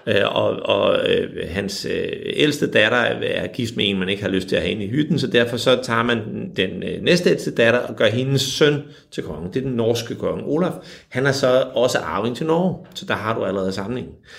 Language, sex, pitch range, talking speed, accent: Danish, male, 110-170 Hz, 230 wpm, native